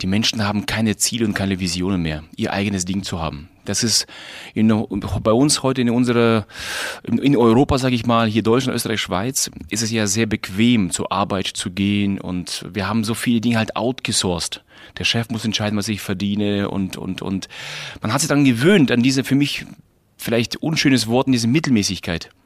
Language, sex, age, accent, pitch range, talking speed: German, male, 30-49, German, 110-135 Hz, 195 wpm